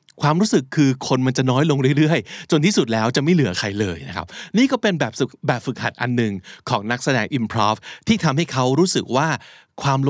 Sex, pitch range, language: male, 110-155 Hz, Thai